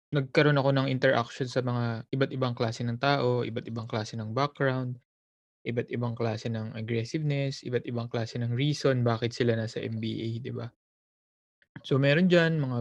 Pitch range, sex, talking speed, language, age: 120-150 Hz, male, 155 wpm, Filipino, 20-39